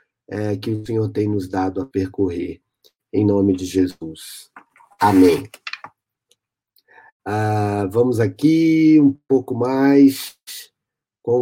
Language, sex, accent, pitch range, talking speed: Portuguese, male, Brazilian, 105-135 Hz, 105 wpm